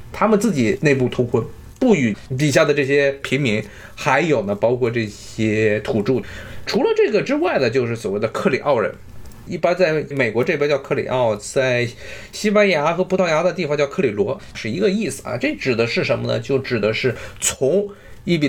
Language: Chinese